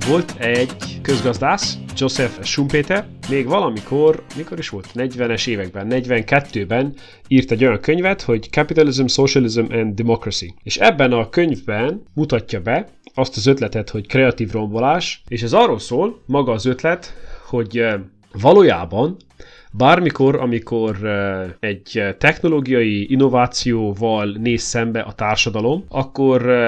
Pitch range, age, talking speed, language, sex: 110-135 Hz, 30-49, 120 wpm, Hungarian, male